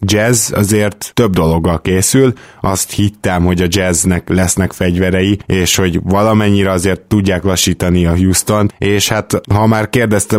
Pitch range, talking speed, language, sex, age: 90-105 Hz, 145 wpm, Hungarian, male, 10-29